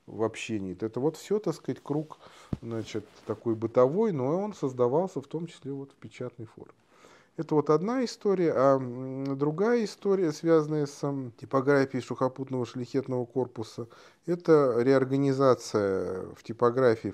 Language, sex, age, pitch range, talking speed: Russian, male, 30-49, 105-145 Hz, 135 wpm